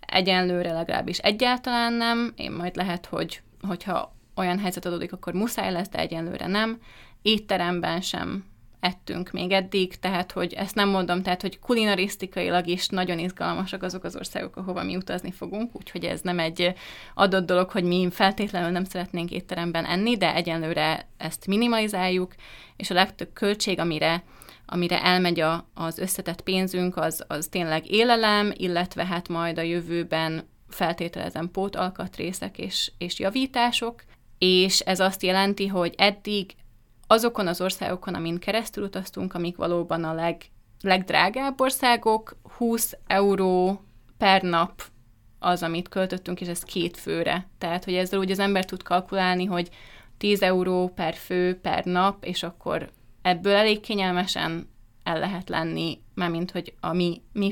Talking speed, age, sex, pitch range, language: 145 wpm, 20-39, female, 170-195 Hz, Hungarian